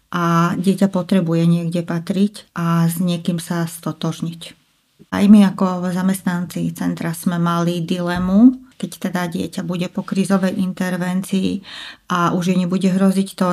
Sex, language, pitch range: female, Slovak, 180-195 Hz